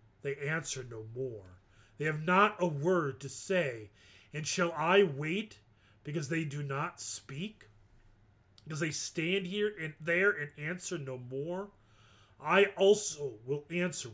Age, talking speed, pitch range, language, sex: 30-49, 145 wpm, 105-160 Hz, English, male